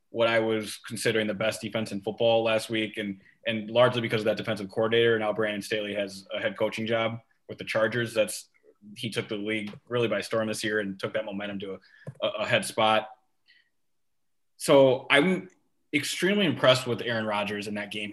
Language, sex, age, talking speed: English, male, 20-39, 200 wpm